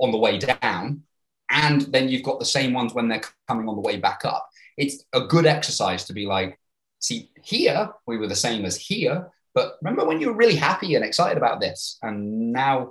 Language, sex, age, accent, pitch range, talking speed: English, male, 20-39, British, 115-160 Hz, 220 wpm